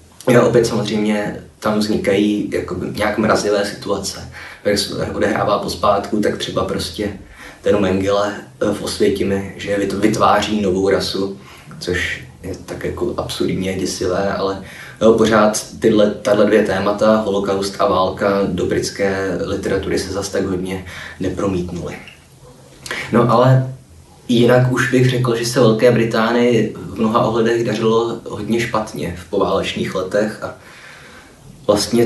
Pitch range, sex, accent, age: 100-115 Hz, male, native, 20-39